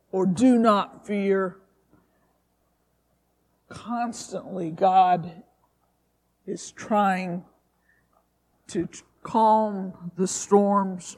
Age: 50-69